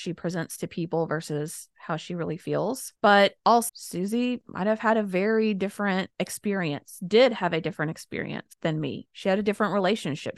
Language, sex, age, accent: English, female, 20-39, American